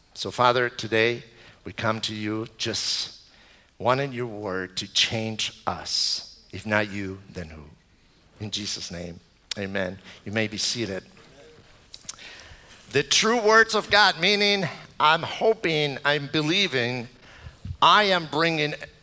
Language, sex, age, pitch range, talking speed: English, male, 60-79, 100-150 Hz, 125 wpm